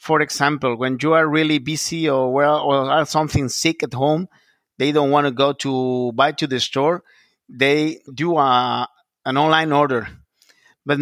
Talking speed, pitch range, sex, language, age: 175 wpm, 130-165 Hz, male, German, 50-69